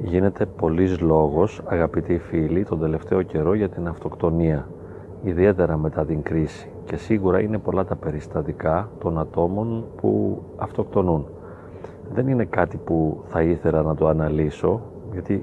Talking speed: 135 wpm